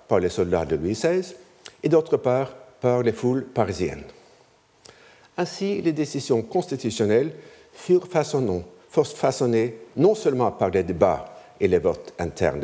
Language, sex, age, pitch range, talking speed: French, male, 60-79, 110-175 Hz, 135 wpm